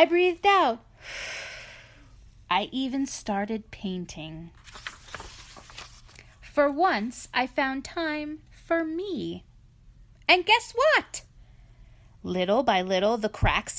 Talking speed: 95 wpm